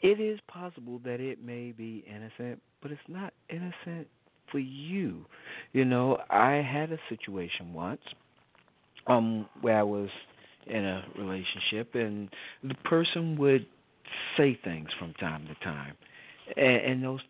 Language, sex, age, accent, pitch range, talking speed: English, male, 50-69, American, 110-160 Hz, 140 wpm